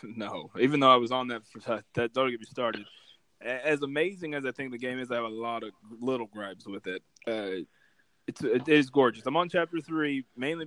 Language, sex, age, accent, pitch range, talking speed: English, male, 20-39, American, 110-135 Hz, 210 wpm